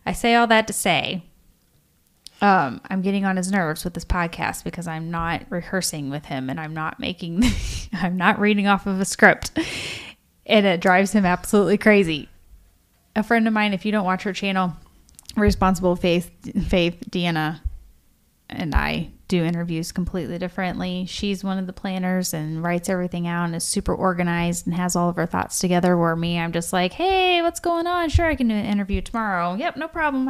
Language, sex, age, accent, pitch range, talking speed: English, female, 10-29, American, 175-215 Hz, 190 wpm